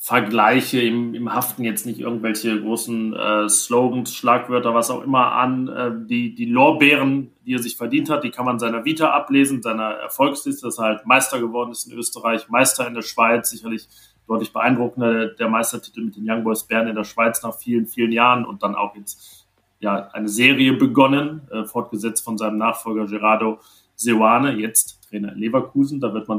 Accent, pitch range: German, 110-130 Hz